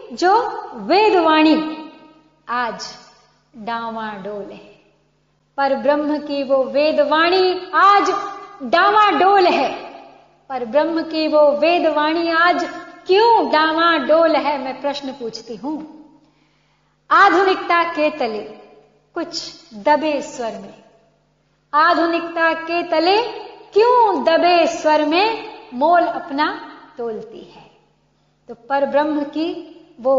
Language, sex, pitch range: Hindi, female, 260-340 Hz